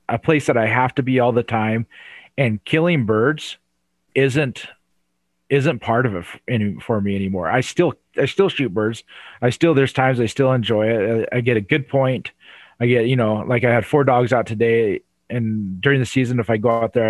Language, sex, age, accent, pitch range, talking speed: English, male, 30-49, American, 110-130 Hz, 215 wpm